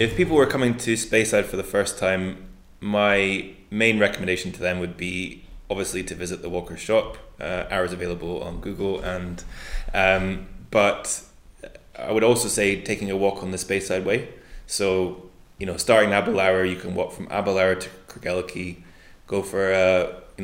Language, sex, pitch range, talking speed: English, male, 90-95 Hz, 170 wpm